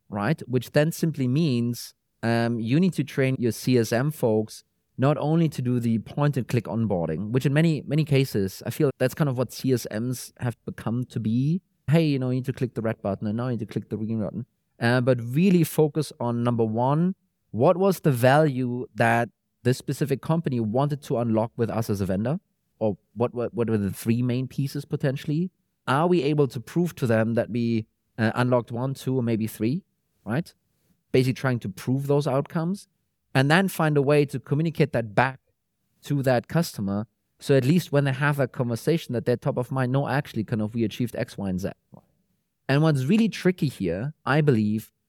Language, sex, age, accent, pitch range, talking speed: English, male, 30-49, German, 115-145 Hz, 205 wpm